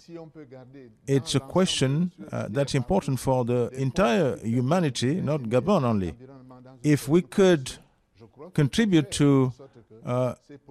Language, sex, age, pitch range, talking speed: English, male, 50-69, 125-160 Hz, 105 wpm